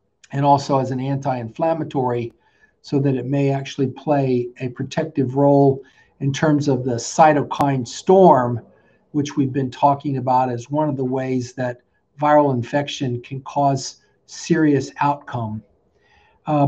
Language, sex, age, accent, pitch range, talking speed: English, male, 50-69, American, 130-155 Hz, 135 wpm